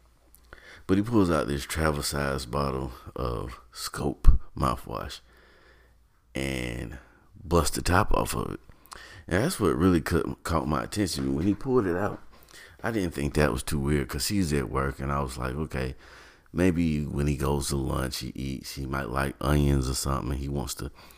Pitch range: 65-80 Hz